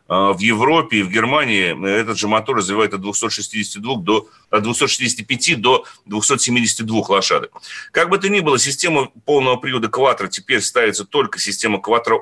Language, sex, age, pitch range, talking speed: Russian, male, 30-49, 105-135 Hz, 150 wpm